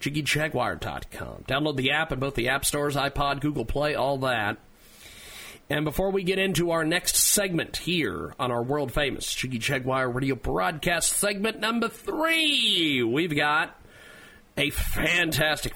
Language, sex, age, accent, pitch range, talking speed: English, male, 40-59, American, 140-185 Hz, 140 wpm